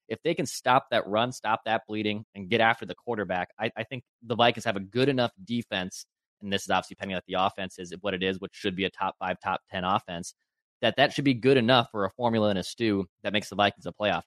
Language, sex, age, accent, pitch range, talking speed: English, male, 20-39, American, 95-110 Hz, 265 wpm